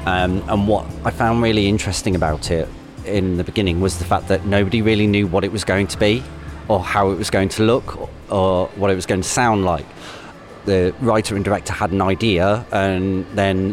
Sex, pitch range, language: male, 95-110 Hz, English